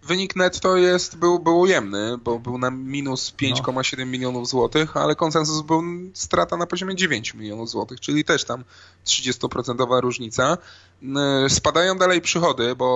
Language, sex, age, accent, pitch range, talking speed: Polish, male, 20-39, native, 120-145 Hz, 140 wpm